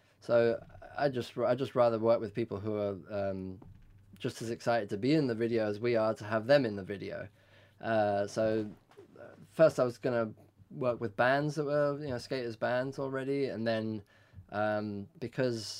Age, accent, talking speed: 20-39, British, 190 wpm